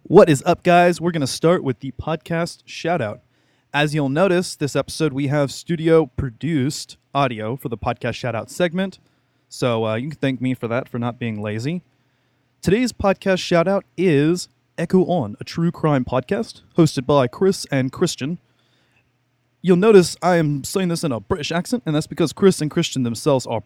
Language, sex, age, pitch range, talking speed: English, male, 20-39, 125-170 Hz, 180 wpm